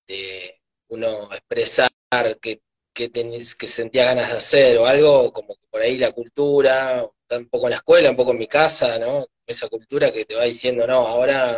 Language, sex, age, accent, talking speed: Spanish, male, 20-39, Argentinian, 185 wpm